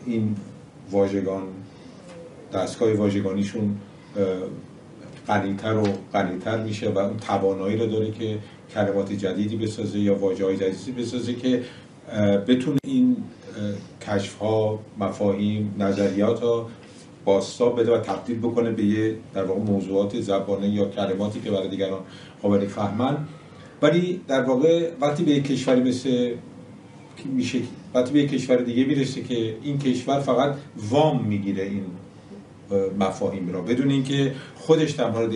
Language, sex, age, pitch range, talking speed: Persian, male, 50-69, 105-140 Hz, 125 wpm